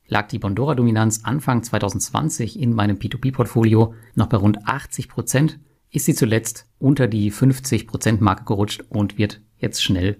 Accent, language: German, German